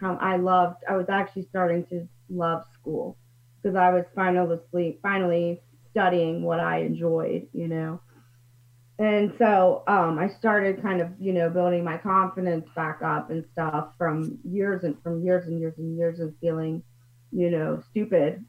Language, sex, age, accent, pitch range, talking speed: English, female, 30-49, American, 160-195 Hz, 165 wpm